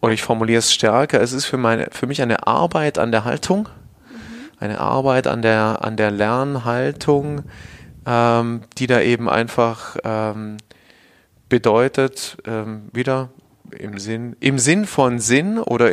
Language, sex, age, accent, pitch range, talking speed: German, male, 30-49, German, 110-130 Hz, 145 wpm